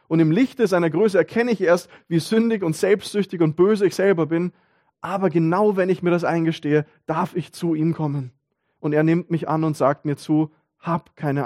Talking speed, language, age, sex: 210 wpm, German, 20-39, male